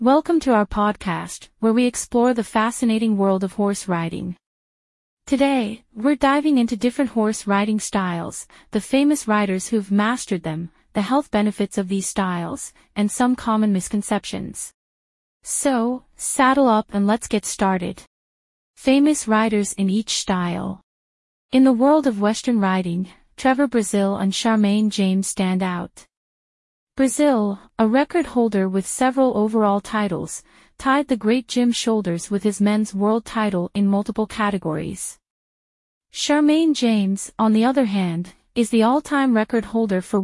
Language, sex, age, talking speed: German, female, 30-49, 140 wpm